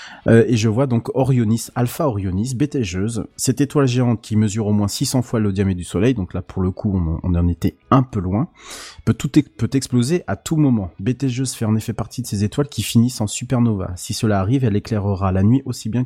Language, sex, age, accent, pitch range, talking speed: French, male, 30-49, French, 95-120 Hz, 235 wpm